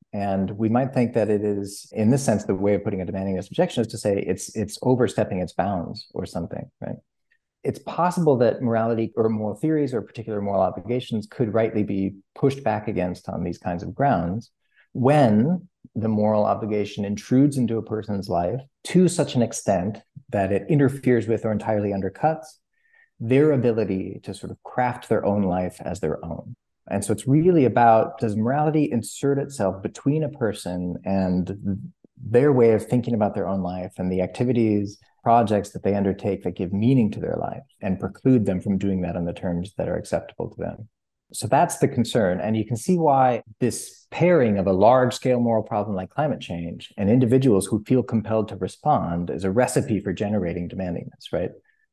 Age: 40-59